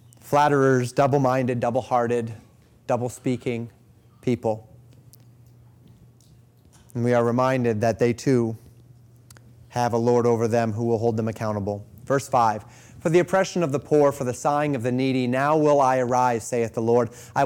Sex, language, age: male, English, 30-49